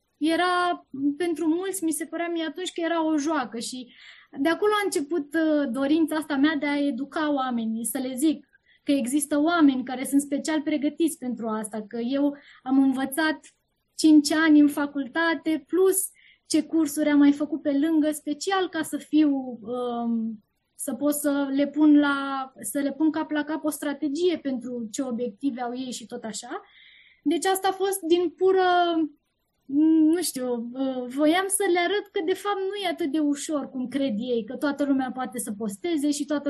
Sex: female